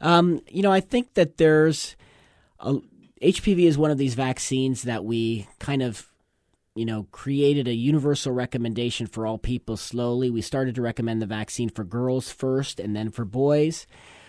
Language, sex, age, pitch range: English, male, 40-59, 110-140 Hz